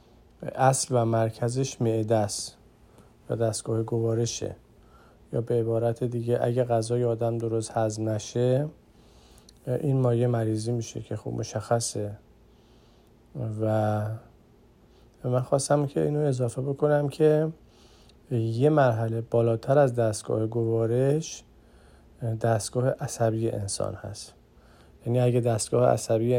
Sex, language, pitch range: male, Persian, 110-130 Hz